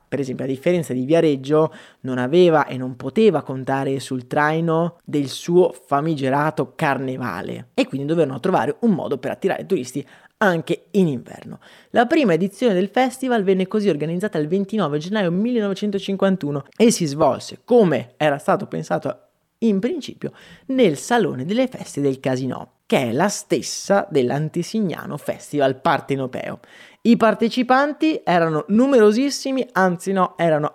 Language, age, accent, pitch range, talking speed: Italian, 20-39, native, 140-200 Hz, 140 wpm